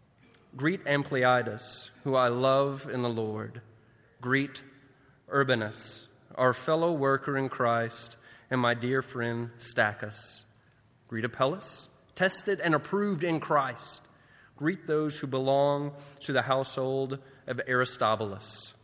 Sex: male